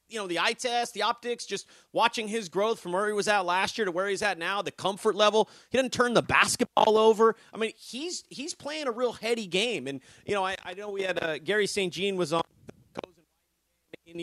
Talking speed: 235 wpm